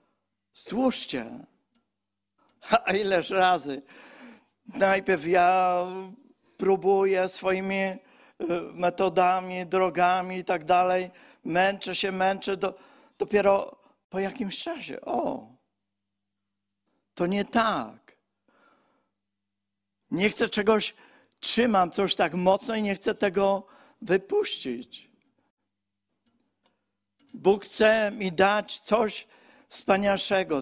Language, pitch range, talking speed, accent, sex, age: Polish, 155-210 Hz, 80 wpm, native, male, 50-69